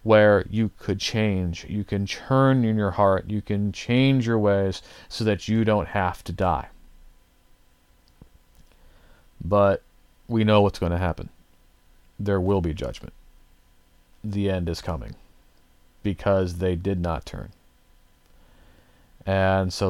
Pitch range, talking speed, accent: 85-105 Hz, 135 wpm, American